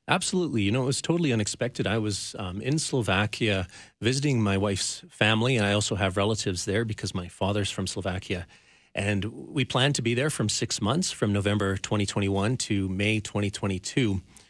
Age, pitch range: 40-59, 100-120 Hz